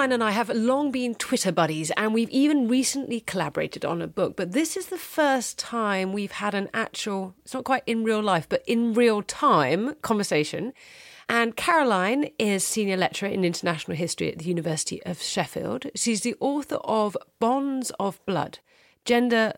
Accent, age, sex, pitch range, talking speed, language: British, 40-59, female, 185-250 Hz, 180 wpm, English